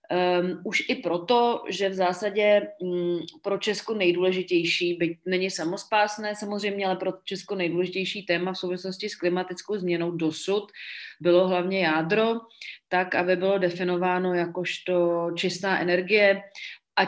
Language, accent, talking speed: Czech, native, 130 wpm